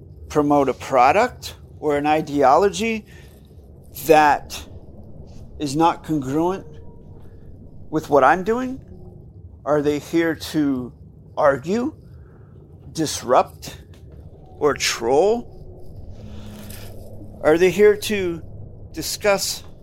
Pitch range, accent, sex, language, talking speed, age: 105-170 Hz, American, male, English, 80 wpm, 50-69